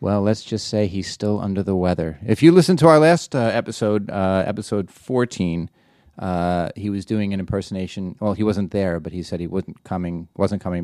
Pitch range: 95-120 Hz